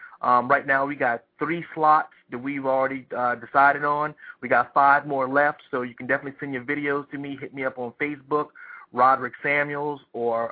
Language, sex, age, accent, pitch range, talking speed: English, male, 40-59, American, 125-145 Hz, 200 wpm